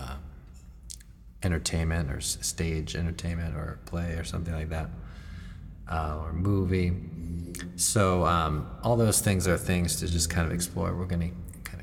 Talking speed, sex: 140 wpm, male